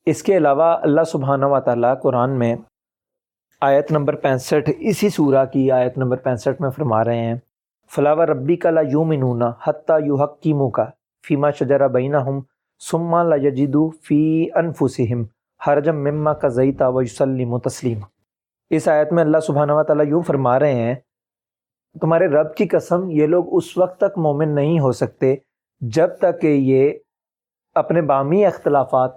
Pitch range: 135-175 Hz